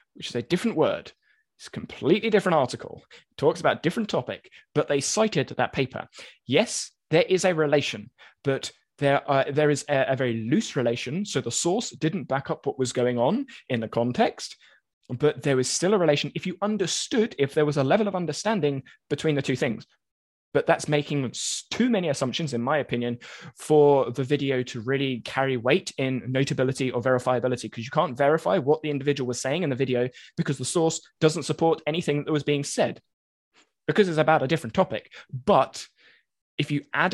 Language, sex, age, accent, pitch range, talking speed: English, male, 20-39, British, 130-170 Hz, 195 wpm